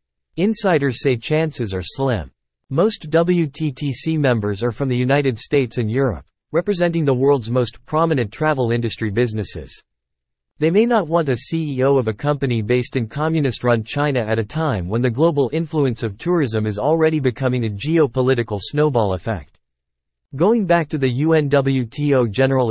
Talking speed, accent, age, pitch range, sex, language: 155 wpm, American, 40-59, 115-150 Hz, male, English